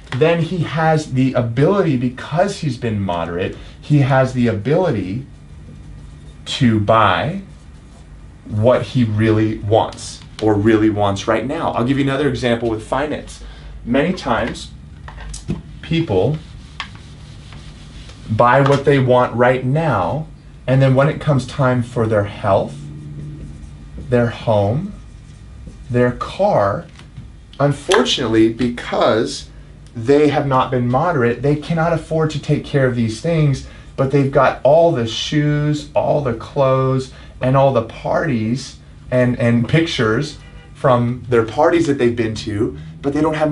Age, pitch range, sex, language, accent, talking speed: 30-49, 115-145 Hz, male, English, American, 130 wpm